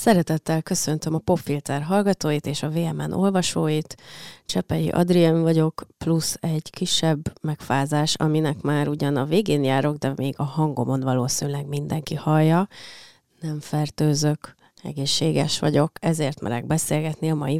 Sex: female